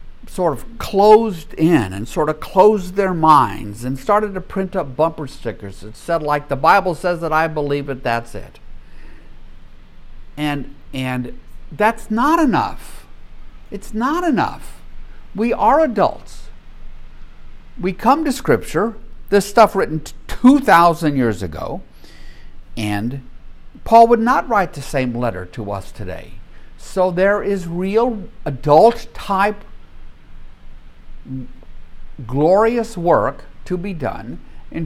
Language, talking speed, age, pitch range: English, 125 wpm, 60-79, 105-175 Hz